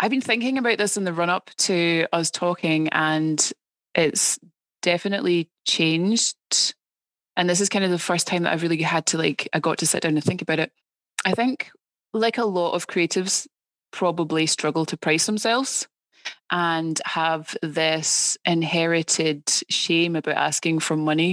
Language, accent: English, British